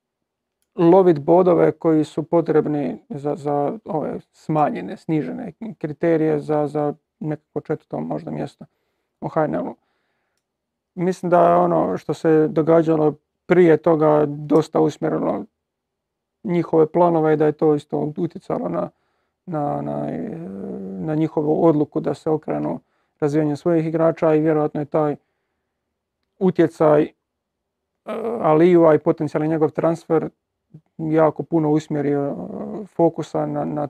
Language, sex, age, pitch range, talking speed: Croatian, male, 40-59, 150-165 Hz, 120 wpm